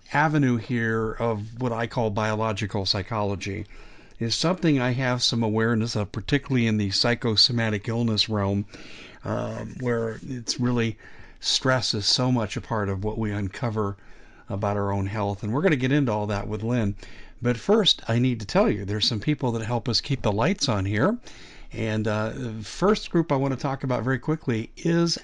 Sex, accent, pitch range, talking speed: male, American, 105-130 Hz, 190 wpm